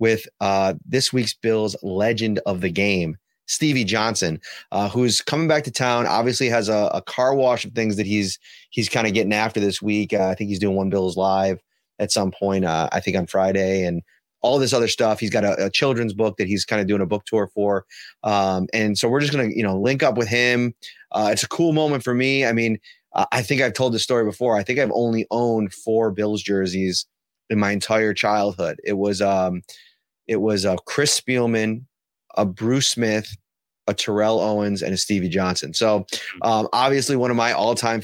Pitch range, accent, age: 100-130 Hz, American, 30-49